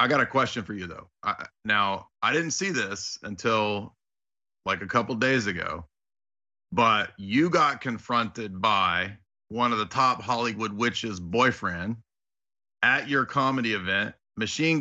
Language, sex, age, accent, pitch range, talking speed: English, male, 40-59, American, 105-125 Hz, 145 wpm